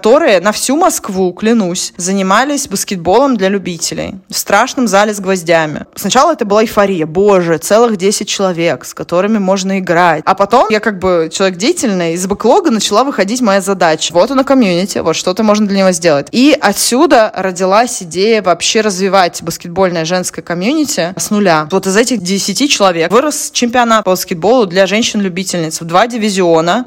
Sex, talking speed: female, 165 wpm